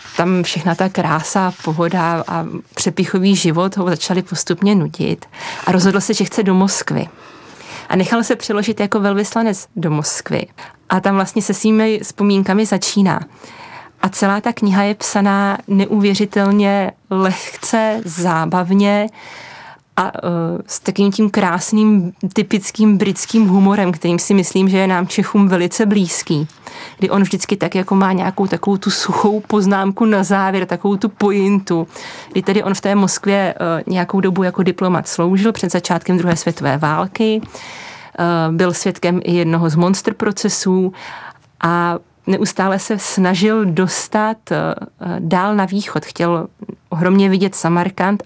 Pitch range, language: 180-205 Hz, Czech